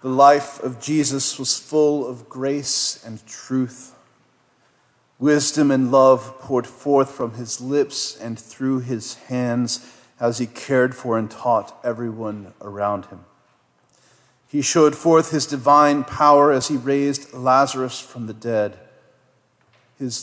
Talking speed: 135 wpm